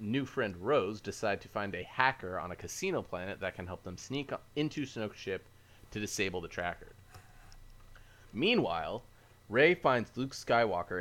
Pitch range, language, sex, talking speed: 95-115 Hz, English, male, 160 wpm